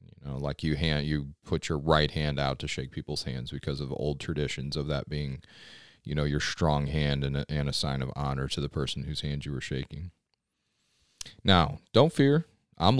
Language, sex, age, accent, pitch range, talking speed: English, male, 30-49, American, 70-90 Hz, 210 wpm